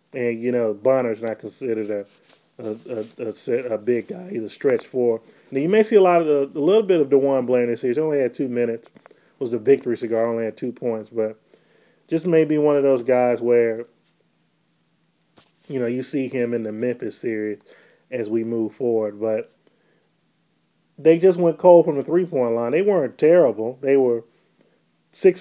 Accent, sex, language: American, male, English